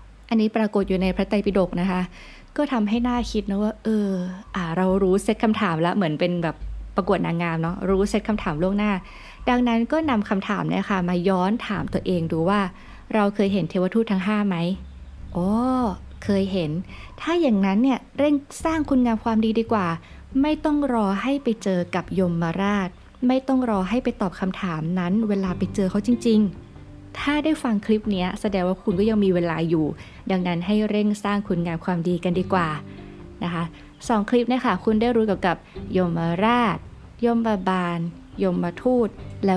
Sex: female